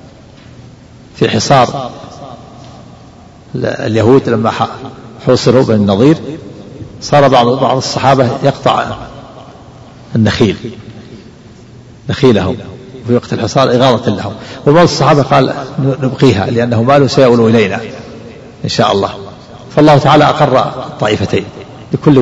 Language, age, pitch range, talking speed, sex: Arabic, 50-69, 115-140 Hz, 90 wpm, male